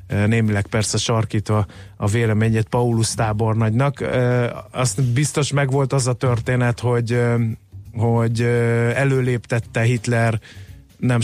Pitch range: 110-130 Hz